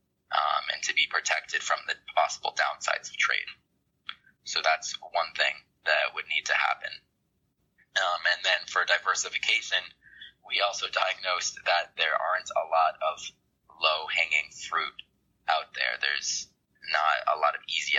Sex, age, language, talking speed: male, 20-39, English, 145 wpm